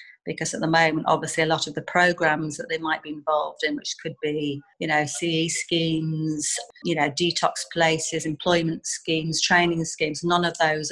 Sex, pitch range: female, 155-180 Hz